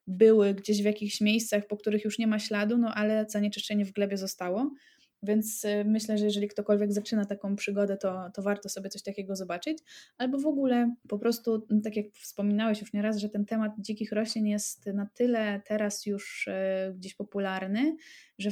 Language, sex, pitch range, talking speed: Polish, female, 200-220 Hz, 180 wpm